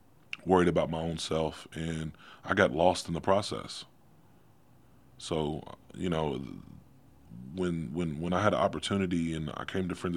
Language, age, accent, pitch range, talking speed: English, 20-39, American, 85-95 Hz, 160 wpm